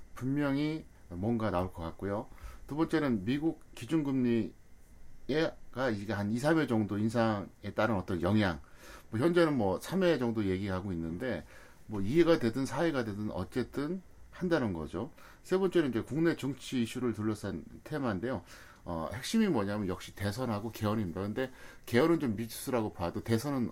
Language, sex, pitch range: Korean, male, 105-145 Hz